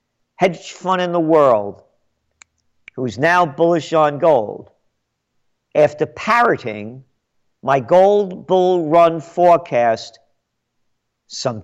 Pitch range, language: 120-175 Hz, English